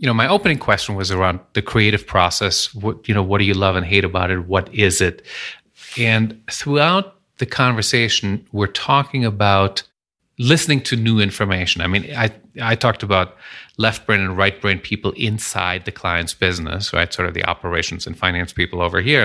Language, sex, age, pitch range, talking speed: English, male, 30-49, 95-115 Hz, 185 wpm